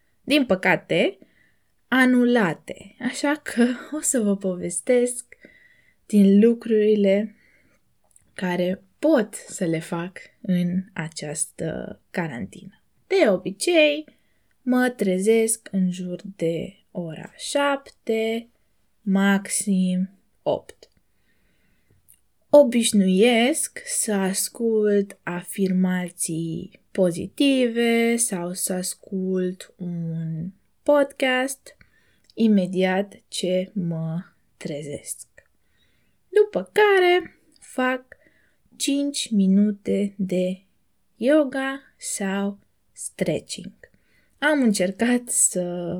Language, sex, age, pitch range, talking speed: Romanian, female, 20-39, 185-250 Hz, 75 wpm